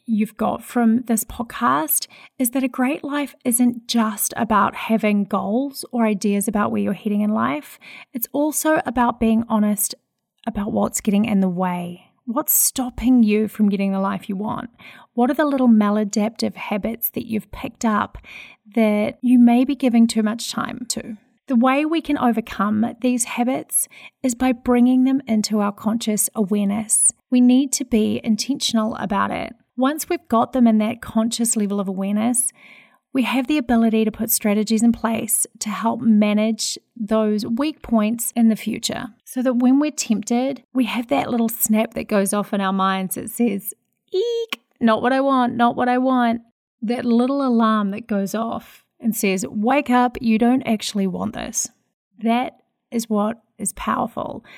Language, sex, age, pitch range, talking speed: English, female, 30-49, 210-250 Hz, 175 wpm